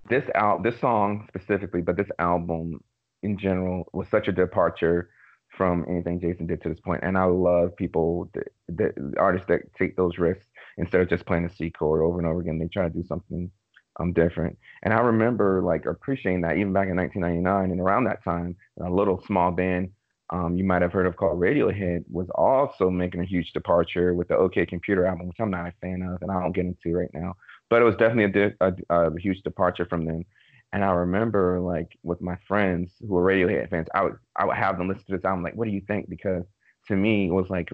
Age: 30-49